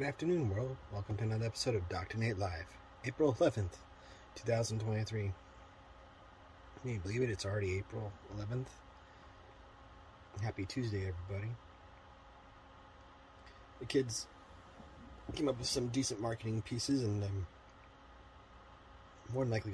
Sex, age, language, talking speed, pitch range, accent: male, 30-49, English, 120 wpm, 90-110 Hz, American